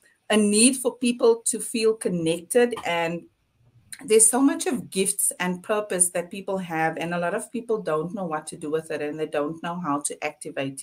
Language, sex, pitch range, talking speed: English, female, 160-190 Hz, 205 wpm